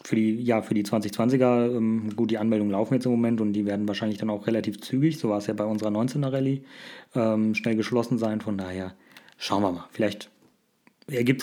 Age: 30-49